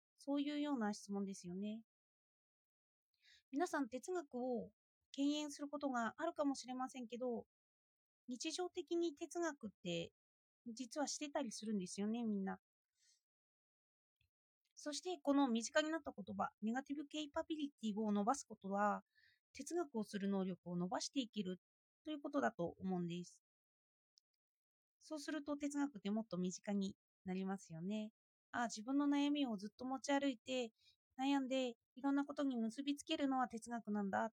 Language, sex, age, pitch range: Japanese, female, 30-49, 210-290 Hz